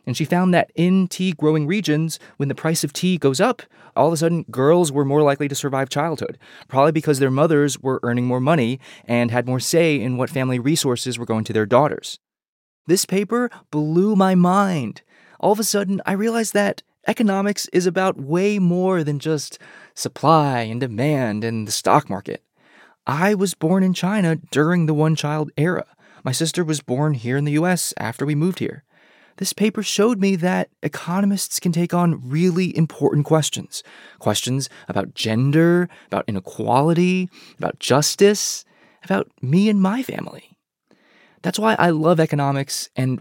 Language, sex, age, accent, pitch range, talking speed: English, male, 20-39, American, 135-180 Hz, 170 wpm